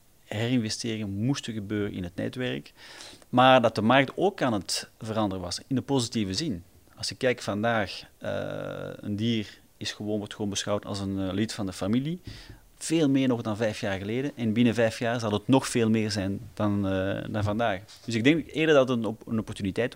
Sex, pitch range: male, 105-125 Hz